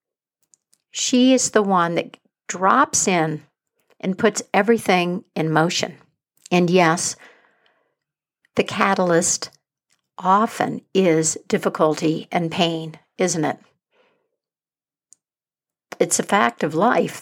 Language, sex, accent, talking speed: English, female, American, 100 wpm